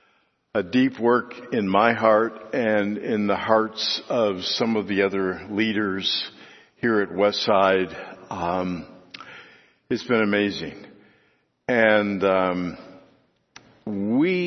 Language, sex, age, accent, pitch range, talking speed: English, male, 60-79, American, 105-135 Hz, 105 wpm